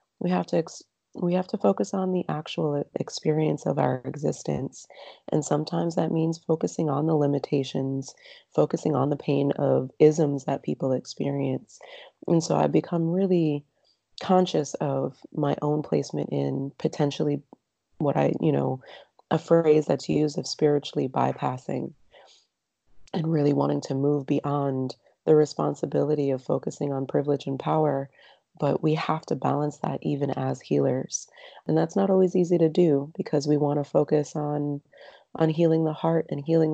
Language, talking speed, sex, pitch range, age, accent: English, 160 wpm, female, 140-160 Hz, 30-49, American